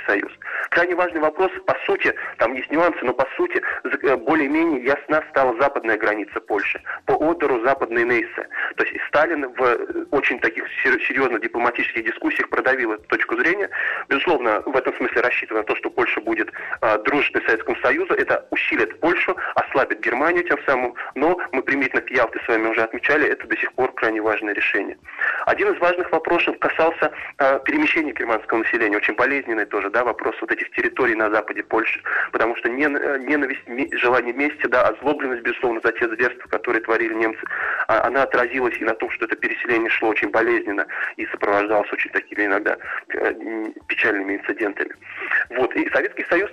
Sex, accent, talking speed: male, native, 165 wpm